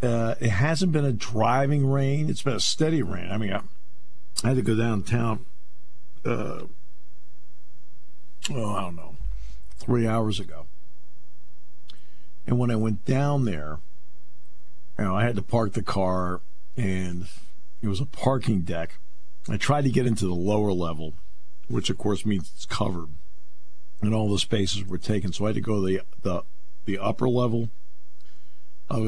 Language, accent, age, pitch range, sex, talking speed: English, American, 50-69, 80-115 Hz, male, 165 wpm